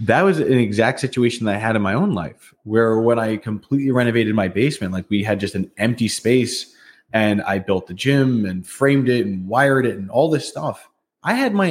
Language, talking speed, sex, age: English, 225 wpm, male, 20-39